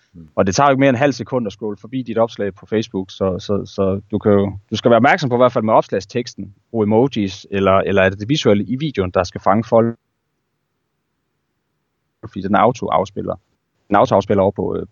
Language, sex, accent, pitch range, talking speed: Danish, male, native, 95-120 Hz, 210 wpm